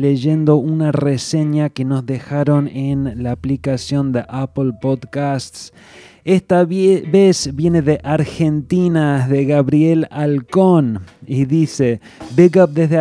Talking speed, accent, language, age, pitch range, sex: 120 wpm, Argentinian, English, 20-39, 120-150 Hz, male